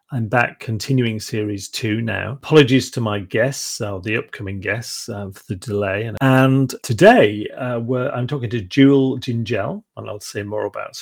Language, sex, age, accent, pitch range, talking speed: English, male, 40-59, British, 105-140 Hz, 170 wpm